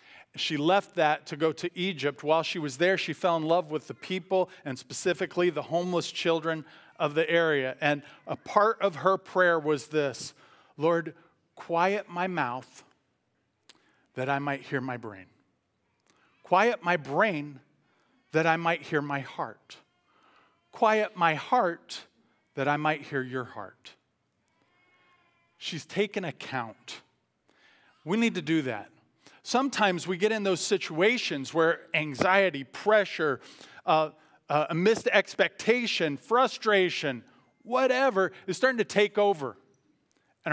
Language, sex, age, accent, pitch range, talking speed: English, male, 40-59, American, 145-185 Hz, 135 wpm